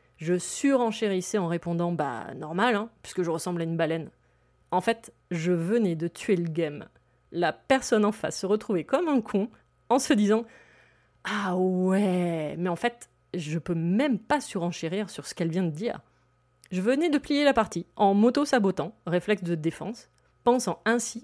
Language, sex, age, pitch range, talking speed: French, female, 30-49, 170-230 Hz, 190 wpm